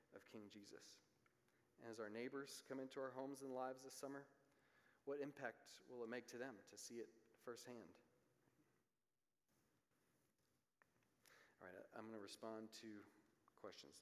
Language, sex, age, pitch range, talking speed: English, male, 40-59, 110-125 Hz, 145 wpm